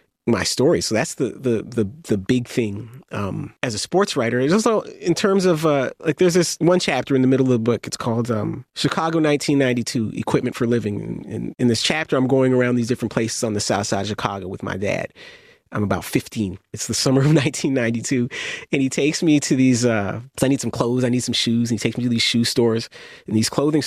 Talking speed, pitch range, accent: 235 wpm, 115-155 Hz, American